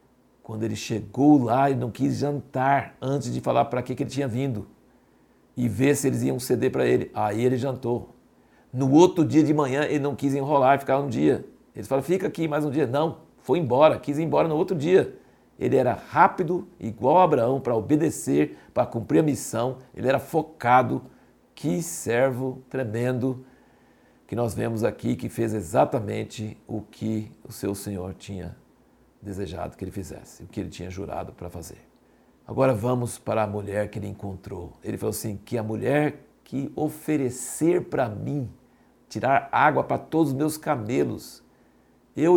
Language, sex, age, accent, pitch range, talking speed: Portuguese, male, 60-79, Brazilian, 115-150 Hz, 175 wpm